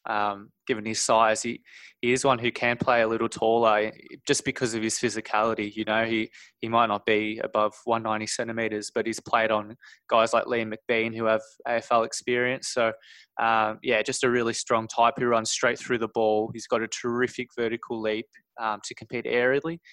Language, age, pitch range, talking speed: English, 20-39, 110-120 Hz, 195 wpm